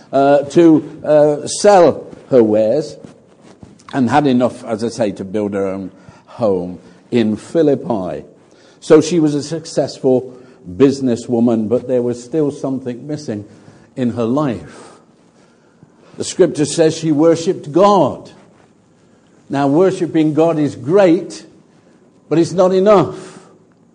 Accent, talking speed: British, 125 wpm